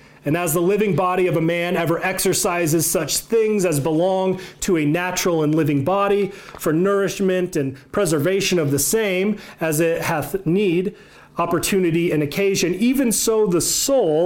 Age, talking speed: 30-49, 160 wpm